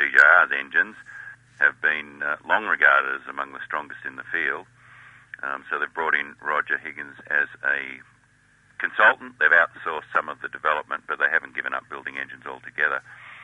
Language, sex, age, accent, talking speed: English, male, 50-69, Australian, 170 wpm